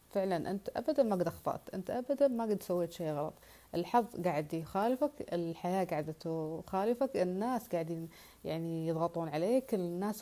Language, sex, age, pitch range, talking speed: Arabic, female, 30-49, 170-210 Hz, 145 wpm